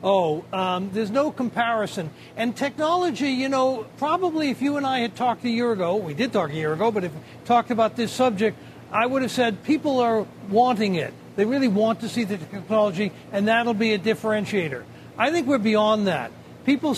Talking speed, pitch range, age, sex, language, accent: 210 wpm, 200-245 Hz, 60-79, male, English, American